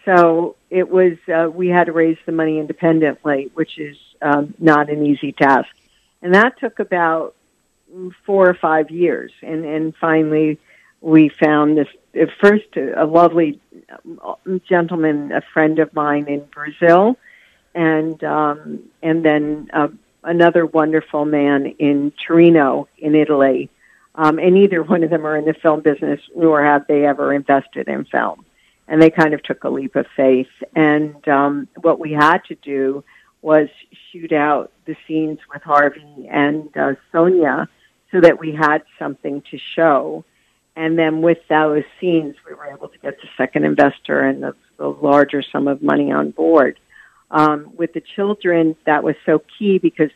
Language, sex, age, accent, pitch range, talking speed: English, female, 50-69, American, 150-165 Hz, 165 wpm